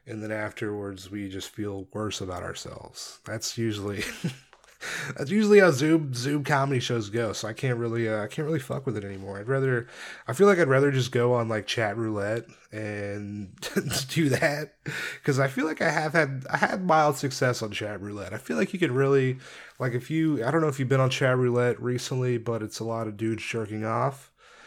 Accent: American